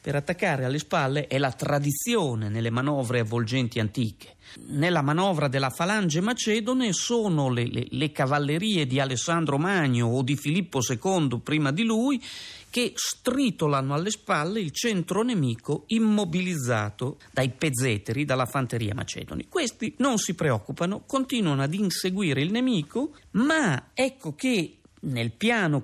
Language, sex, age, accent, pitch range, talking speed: Italian, male, 40-59, native, 130-215 Hz, 130 wpm